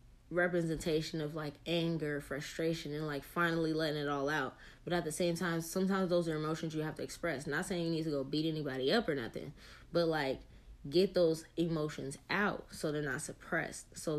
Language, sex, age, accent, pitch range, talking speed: English, female, 10-29, American, 150-175 Hz, 200 wpm